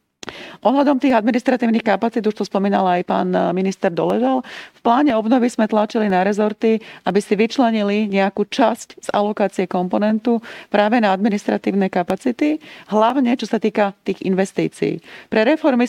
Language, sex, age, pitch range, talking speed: Slovak, female, 30-49, 195-230 Hz, 145 wpm